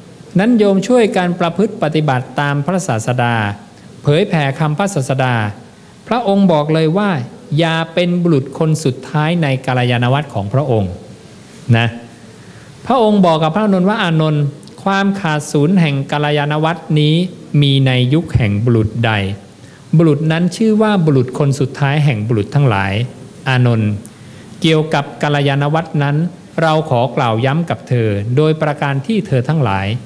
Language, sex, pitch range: English, male, 125-165 Hz